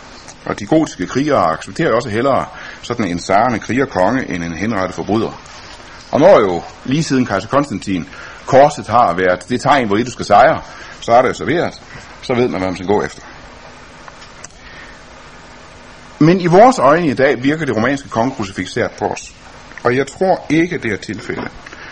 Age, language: 60-79, Danish